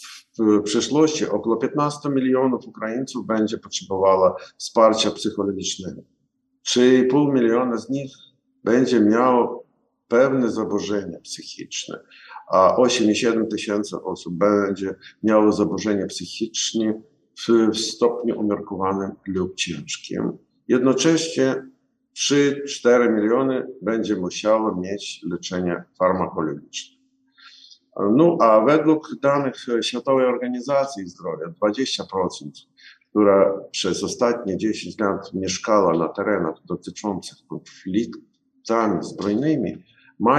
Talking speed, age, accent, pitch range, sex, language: 90 wpm, 50-69, native, 100-140 Hz, male, Polish